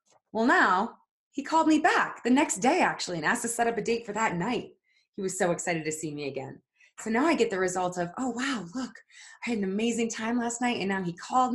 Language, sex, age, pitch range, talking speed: English, female, 20-39, 175-240 Hz, 255 wpm